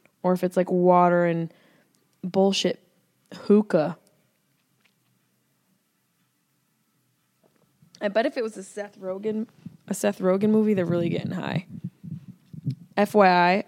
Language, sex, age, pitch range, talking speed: English, female, 20-39, 175-200 Hz, 110 wpm